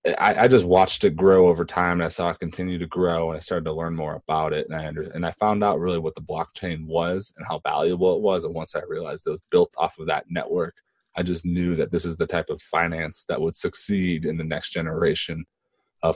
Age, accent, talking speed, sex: 20-39, American, 255 wpm, male